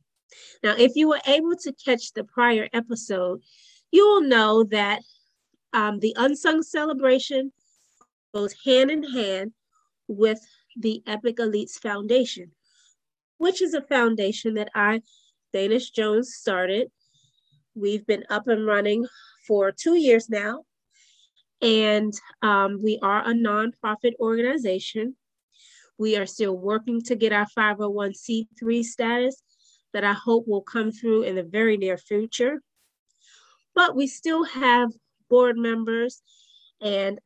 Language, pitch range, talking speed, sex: English, 200-245 Hz, 125 wpm, female